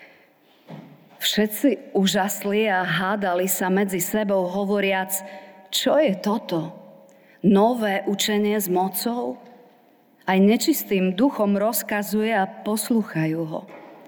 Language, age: Slovak, 40-59